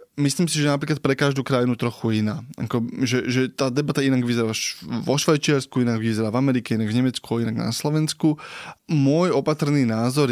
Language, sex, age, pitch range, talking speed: Slovak, male, 20-39, 115-140 Hz, 175 wpm